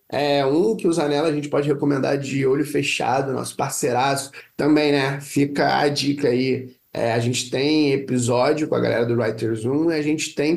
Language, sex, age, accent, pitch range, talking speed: Portuguese, male, 20-39, Brazilian, 140-165 Hz, 200 wpm